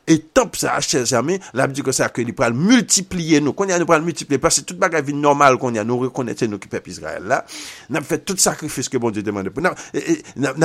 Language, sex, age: French, male, 50-69